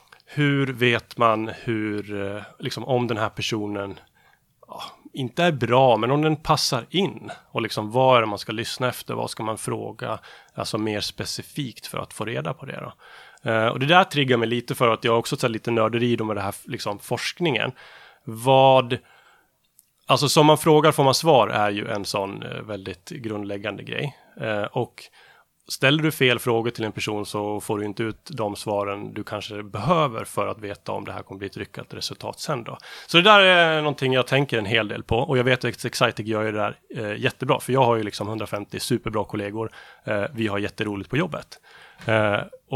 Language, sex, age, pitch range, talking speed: Swedish, male, 30-49, 105-140 Hz, 205 wpm